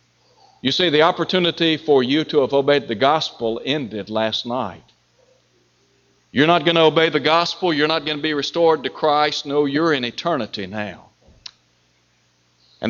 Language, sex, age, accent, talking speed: English, male, 60-79, American, 165 wpm